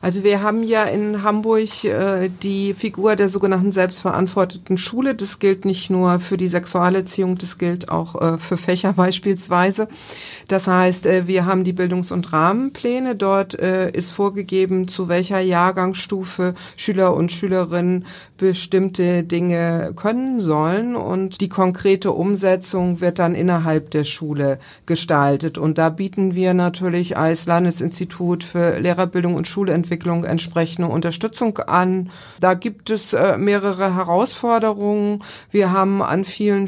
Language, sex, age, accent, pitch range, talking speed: German, female, 50-69, German, 175-195 Hz, 135 wpm